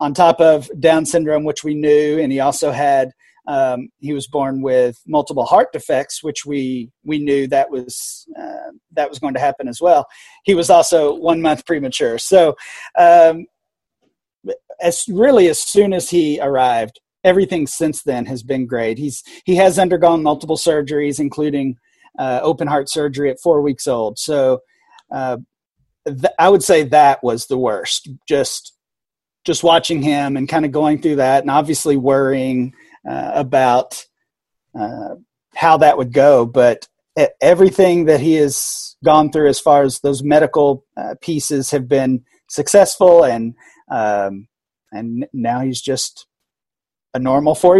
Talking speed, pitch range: 160 wpm, 135-165 Hz